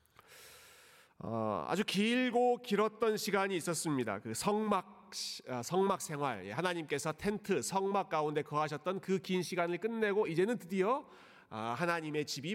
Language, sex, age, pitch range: Korean, male, 30-49, 125-185 Hz